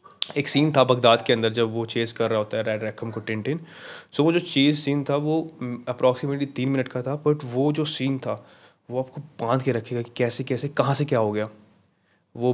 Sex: male